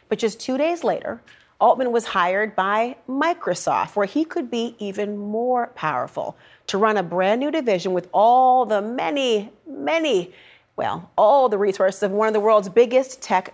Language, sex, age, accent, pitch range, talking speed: English, female, 40-59, American, 195-255 Hz, 175 wpm